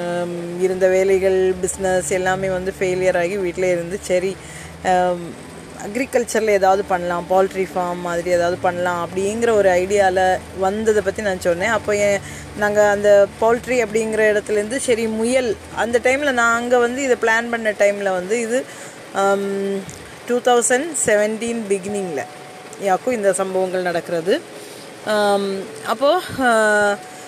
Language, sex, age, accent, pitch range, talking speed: Tamil, female, 20-39, native, 190-230 Hz, 115 wpm